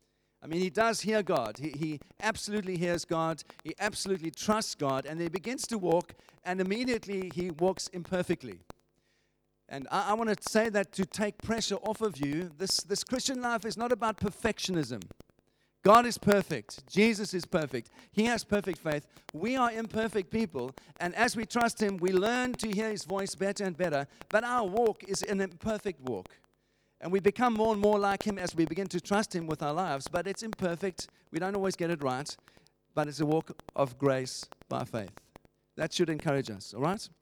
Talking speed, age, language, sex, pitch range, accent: 195 wpm, 50-69, English, male, 155-210 Hz, German